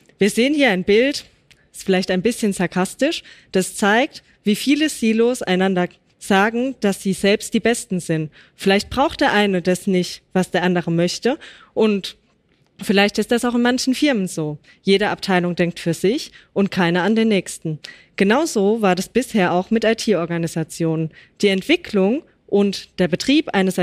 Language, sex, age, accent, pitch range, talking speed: German, female, 20-39, German, 180-235 Hz, 165 wpm